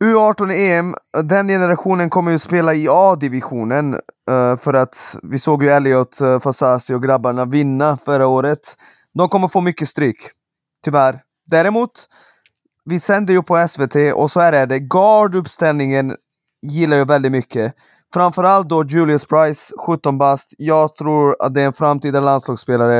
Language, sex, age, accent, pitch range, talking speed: Swedish, male, 20-39, native, 140-170 Hz, 150 wpm